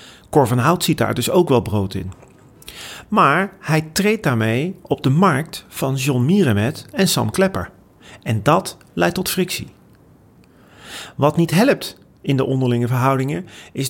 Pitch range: 115-165 Hz